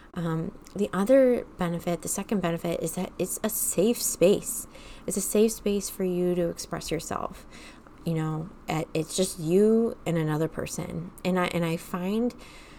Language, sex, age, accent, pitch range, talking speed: English, female, 20-39, American, 165-195 Hz, 165 wpm